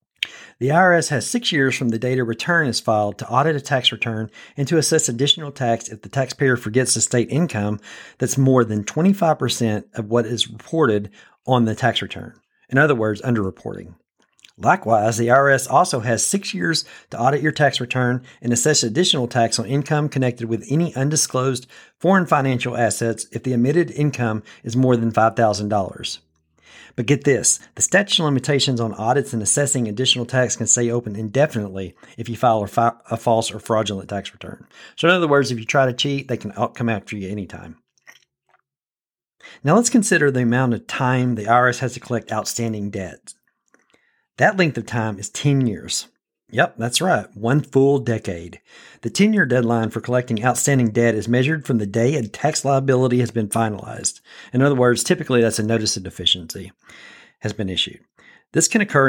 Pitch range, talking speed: 115-135 Hz, 185 wpm